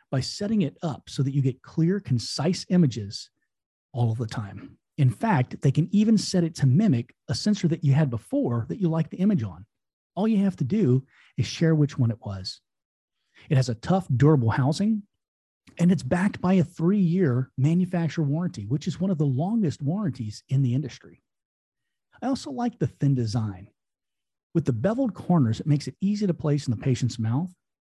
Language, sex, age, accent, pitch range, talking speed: English, male, 40-59, American, 125-180 Hz, 195 wpm